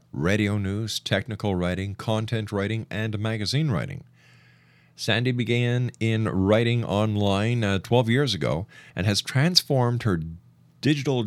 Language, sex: English, male